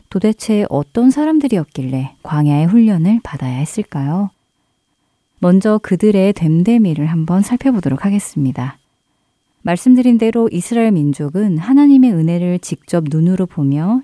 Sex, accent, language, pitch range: female, native, Korean, 150-215 Hz